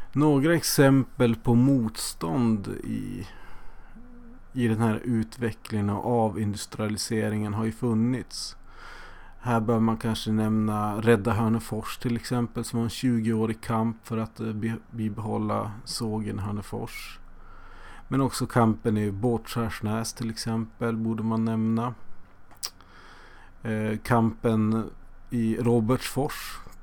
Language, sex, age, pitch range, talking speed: English, male, 30-49, 105-120 Hz, 105 wpm